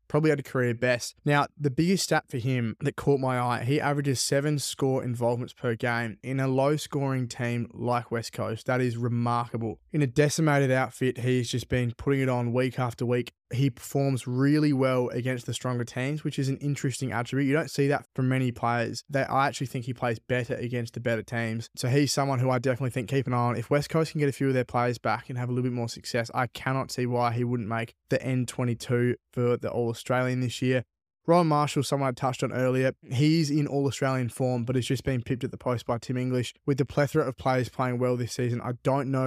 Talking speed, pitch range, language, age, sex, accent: 235 wpm, 120-135 Hz, English, 20-39, male, Australian